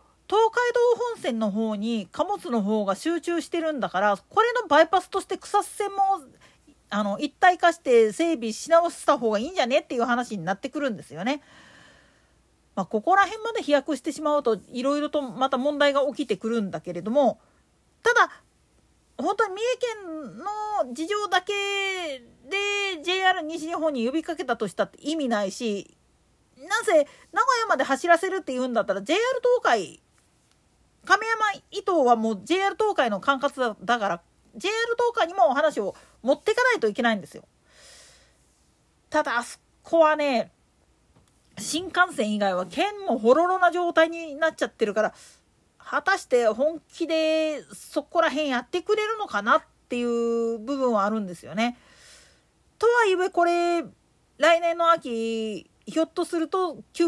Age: 40-59